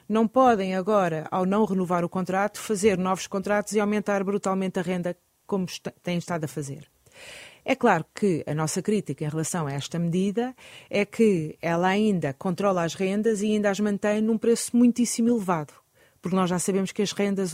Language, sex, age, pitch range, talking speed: Portuguese, female, 30-49, 160-205 Hz, 185 wpm